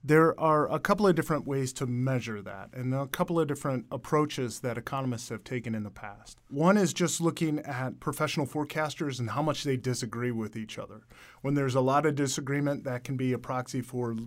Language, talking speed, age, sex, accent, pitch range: English, 210 wpm, 30-49, male, American, 120-150 Hz